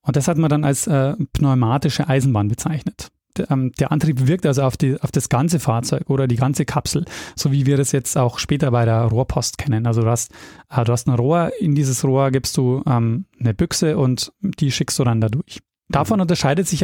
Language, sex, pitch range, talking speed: German, male, 125-155 Hz, 215 wpm